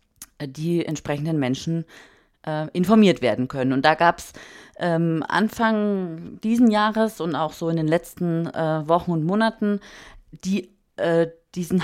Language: German